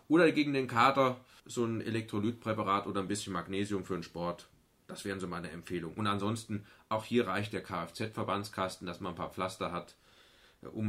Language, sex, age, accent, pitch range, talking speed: German, male, 30-49, German, 105-130 Hz, 180 wpm